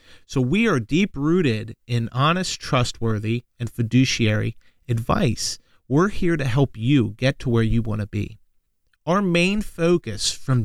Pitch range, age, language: 115-165 Hz, 40-59, English